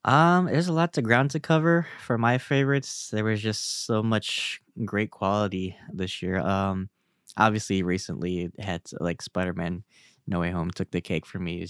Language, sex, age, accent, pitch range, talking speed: English, male, 10-29, American, 95-105 Hz, 185 wpm